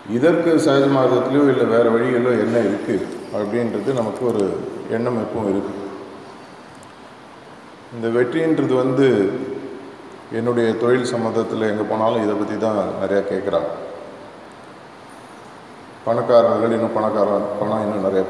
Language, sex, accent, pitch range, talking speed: Tamil, male, native, 105-125 Hz, 105 wpm